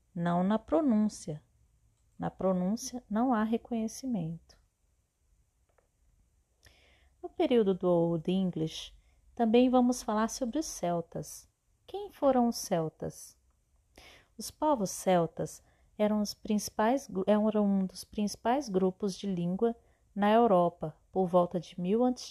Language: Portuguese